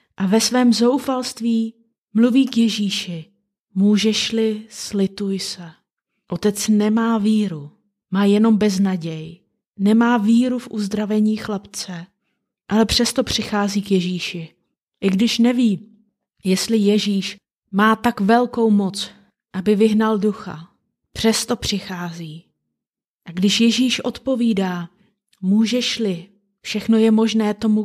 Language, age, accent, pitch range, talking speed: Czech, 30-49, native, 195-225 Hz, 105 wpm